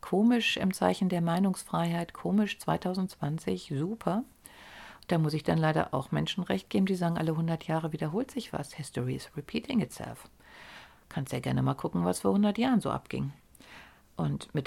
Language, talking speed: German, 170 wpm